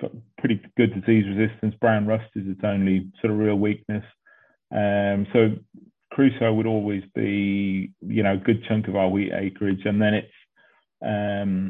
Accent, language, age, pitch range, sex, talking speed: British, English, 30-49, 100-110 Hz, male, 165 wpm